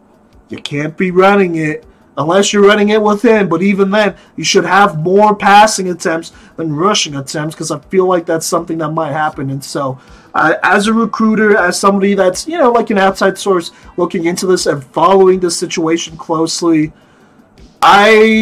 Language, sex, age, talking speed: English, male, 30-49, 180 wpm